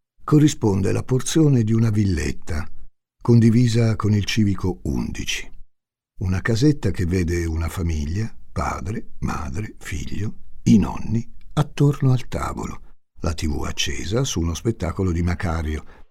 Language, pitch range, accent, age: Italian, 85-115 Hz, native, 60-79